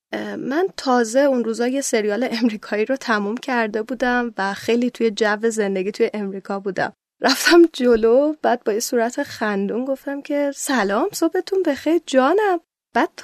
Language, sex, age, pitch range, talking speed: Persian, female, 10-29, 220-285 Hz, 145 wpm